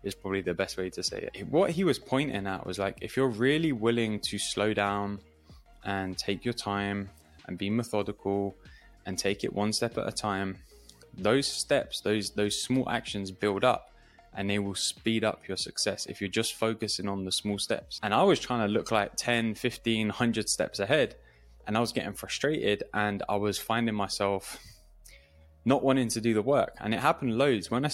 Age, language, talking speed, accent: 20-39, English, 200 wpm, British